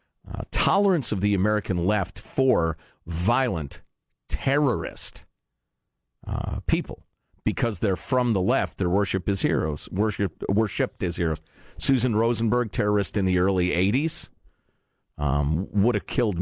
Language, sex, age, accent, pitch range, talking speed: English, male, 40-59, American, 95-115 Hz, 120 wpm